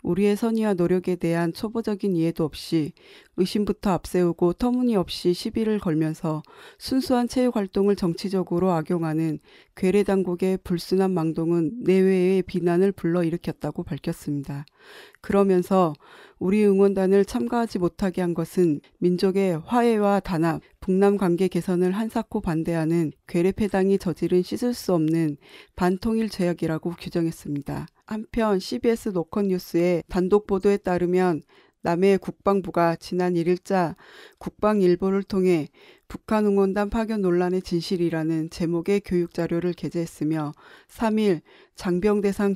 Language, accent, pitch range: Korean, native, 170-200 Hz